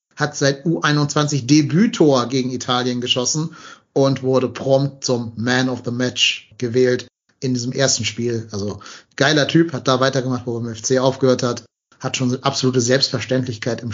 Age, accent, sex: 30-49, German, male